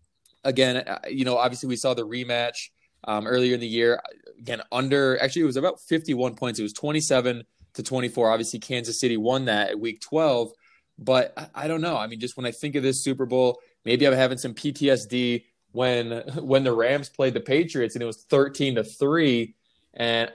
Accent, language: American, English